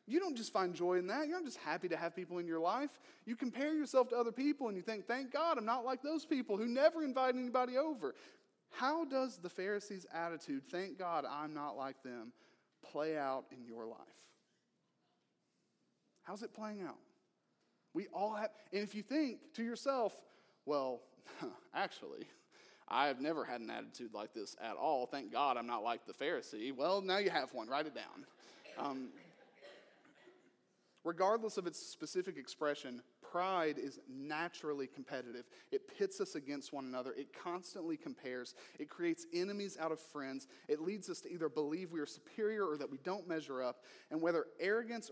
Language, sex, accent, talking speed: English, male, American, 180 wpm